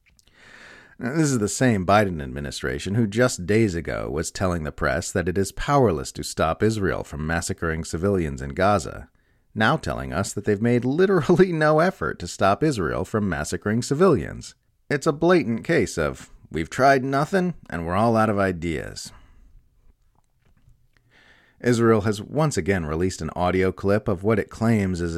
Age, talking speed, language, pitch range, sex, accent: 40-59, 160 wpm, English, 75-105 Hz, male, American